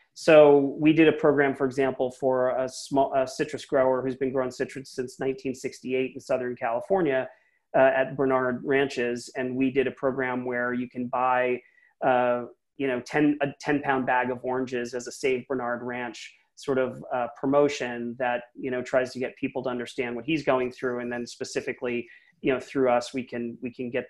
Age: 30-49